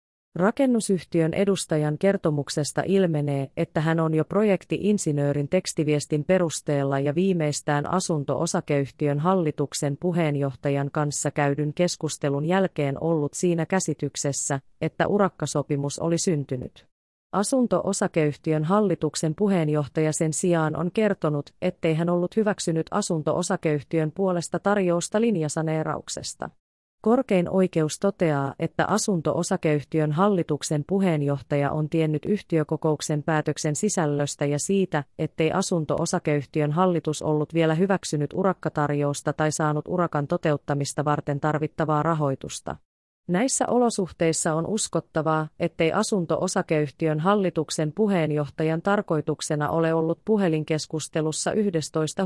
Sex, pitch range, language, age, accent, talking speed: female, 150-180 Hz, Finnish, 30-49, native, 95 wpm